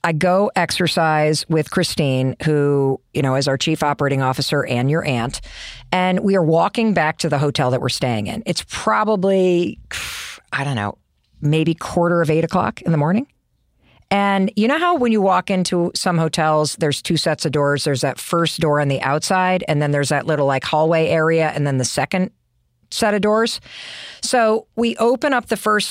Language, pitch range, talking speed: English, 150-205 Hz, 195 wpm